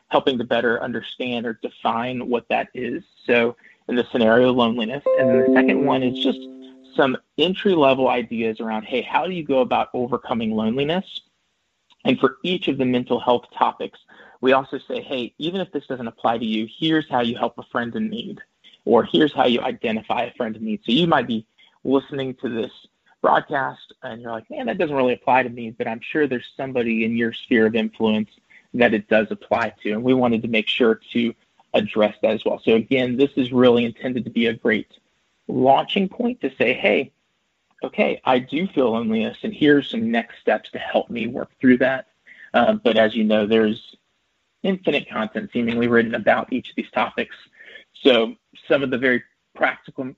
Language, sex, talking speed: English, male, 195 wpm